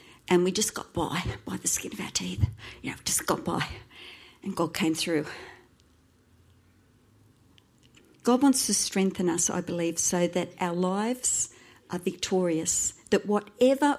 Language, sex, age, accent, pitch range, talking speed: English, female, 50-69, Australian, 190-250 Hz, 155 wpm